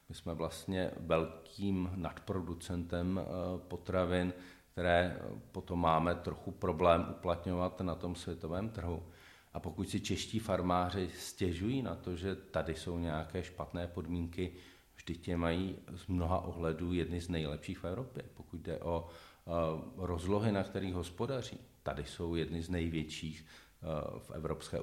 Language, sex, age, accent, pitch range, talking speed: Czech, male, 40-59, native, 85-95 Hz, 130 wpm